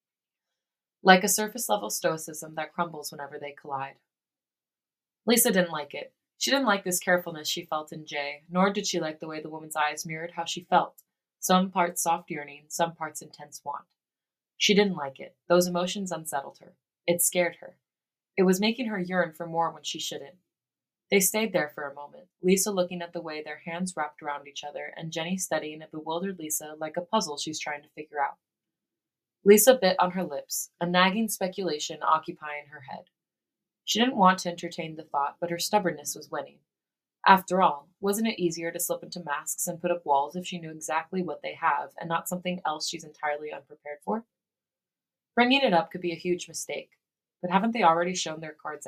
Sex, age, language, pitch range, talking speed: female, 20-39, English, 155-185 Hz, 200 wpm